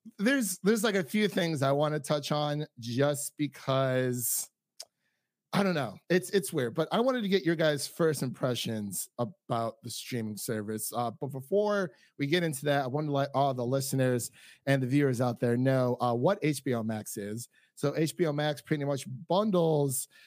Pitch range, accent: 125-150 Hz, American